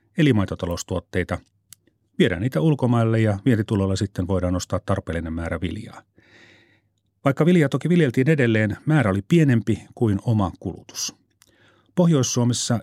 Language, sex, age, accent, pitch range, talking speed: Finnish, male, 40-59, native, 100-135 Hz, 115 wpm